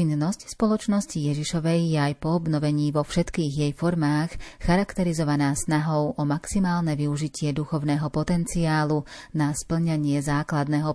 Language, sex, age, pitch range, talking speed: Slovak, female, 30-49, 150-165 Hz, 115 wpm